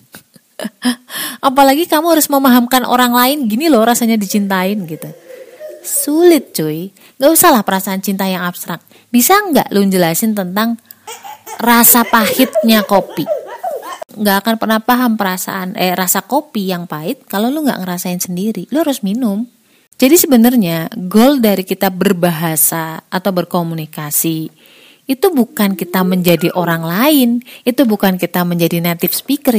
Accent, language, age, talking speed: native, Indonesian, 30-49, 135 wpm